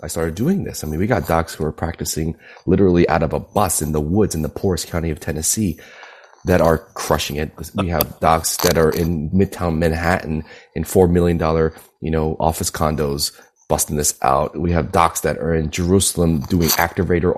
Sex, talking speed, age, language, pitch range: male, 195 wpm, 30-49, English, 75-95 Hz